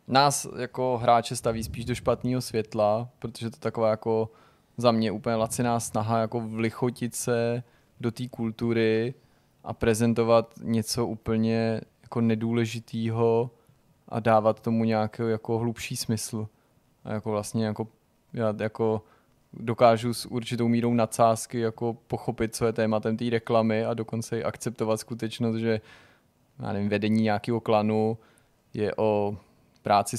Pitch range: 110-120 Hz